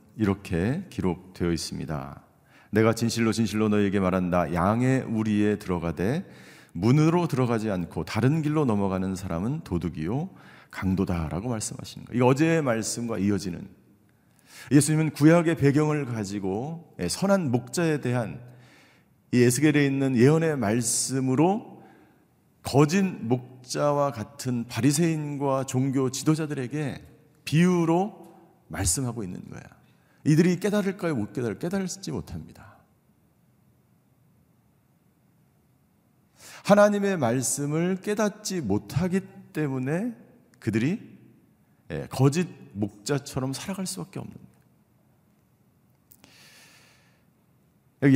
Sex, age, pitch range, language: male, 40-59, 110-160 Hz, Korean